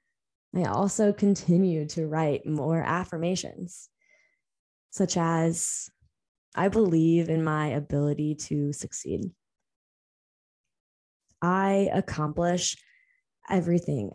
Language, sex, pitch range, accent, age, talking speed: English, female, 145-180 Hz, American, 20-39, 80 wpm